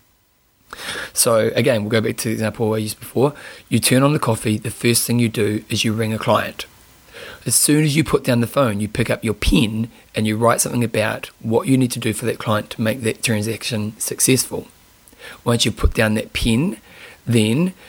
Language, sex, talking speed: English, male, 215 wpm